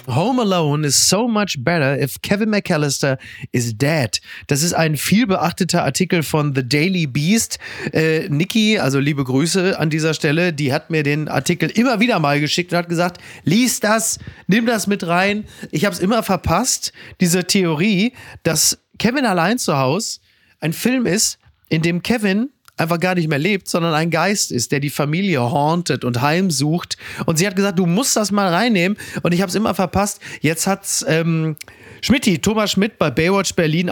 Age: 30-49